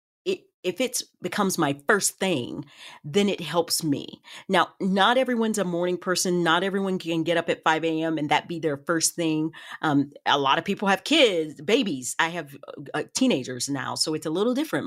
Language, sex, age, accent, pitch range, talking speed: English, female, 40-59, American, 155-205 Hz, 195 wpm